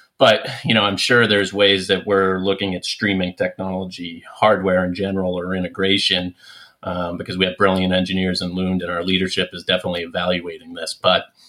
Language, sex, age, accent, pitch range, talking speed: English, male, 30-49, American, 90-100 Hz, 180 wpm